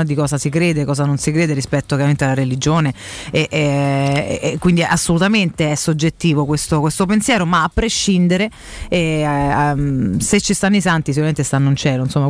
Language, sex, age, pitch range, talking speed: Italian, female, 30-49, 145-170 Hz, 180 wpm